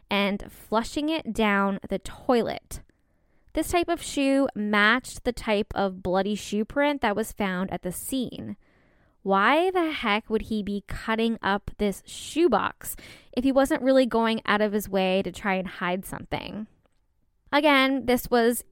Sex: female